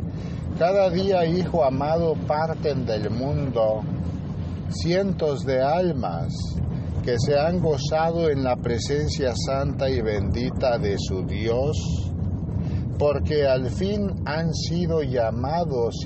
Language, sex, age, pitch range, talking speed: Spanish, male, 50-69, 95-140 Hz, 110 wpm